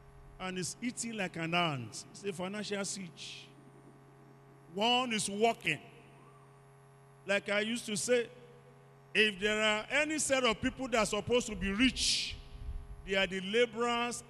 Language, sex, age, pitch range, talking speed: English, male, 50-69, 145-235 Hz, 145 wpm